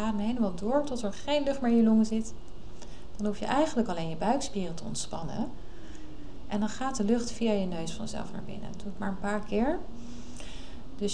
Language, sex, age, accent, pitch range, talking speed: Dutch, female, 30-49, Dutch, 190-220 Hz, 210 wpm